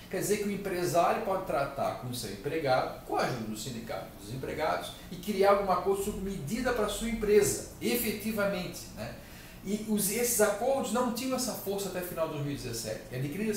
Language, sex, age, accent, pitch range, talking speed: Portuguese, male, 40-59, Brazilian, 165-225 Hz, 185 wpm